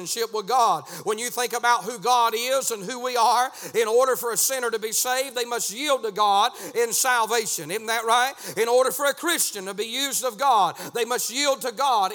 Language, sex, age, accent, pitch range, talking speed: English, male, 40-59, American, 235-275 Hz, 225 wpm